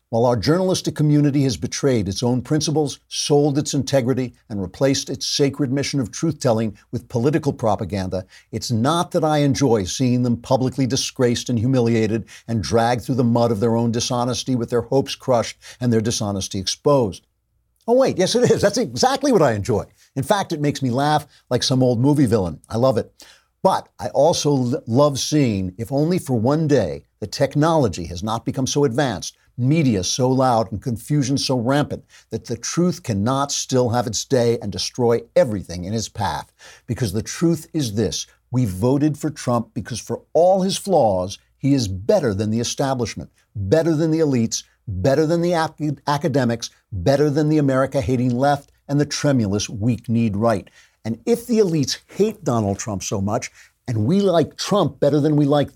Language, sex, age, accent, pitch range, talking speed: English, male, 60-79, American, 115-145 Hz, 180 wpm